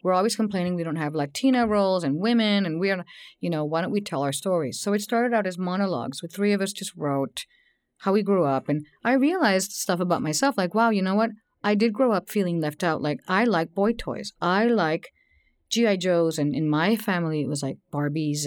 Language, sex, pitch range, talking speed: English, female, 160-220 Hz, 235 wpm